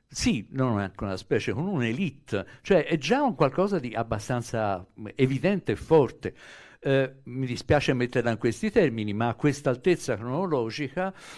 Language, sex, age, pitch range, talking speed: Italian, male, 60-79, 105-135 Hz, 155 wpm